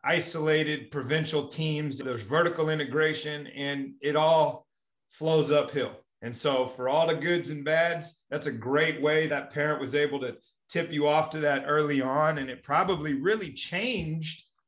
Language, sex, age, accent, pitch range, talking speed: English, male, 30-49, American, 135-160 Hz, 165 wpm